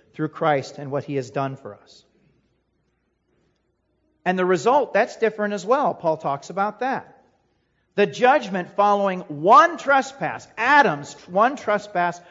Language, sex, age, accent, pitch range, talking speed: English, male, 40-59, American, 155-205 Hz, 135 wpm